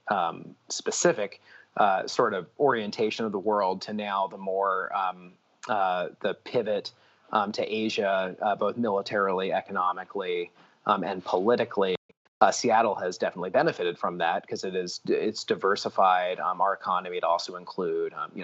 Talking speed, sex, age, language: 150 wpm, male, 30-49, English